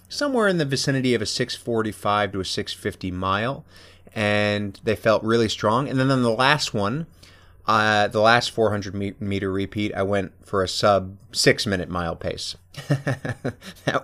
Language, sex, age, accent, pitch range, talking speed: English, male, 30-49, American, 95-125 Hz, 165 wpm